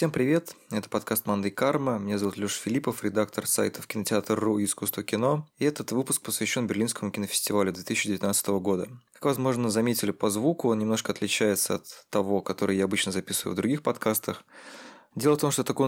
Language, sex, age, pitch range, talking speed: Russian, male, 20-39, 100-115 Hz, 180 wpm